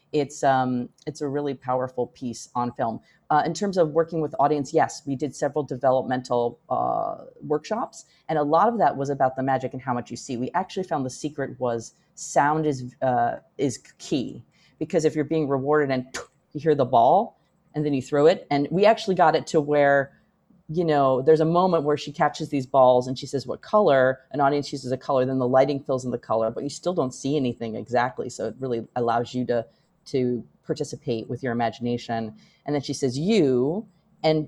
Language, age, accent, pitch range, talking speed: English, 30-49, American, 130-165 Hz, 210 wpm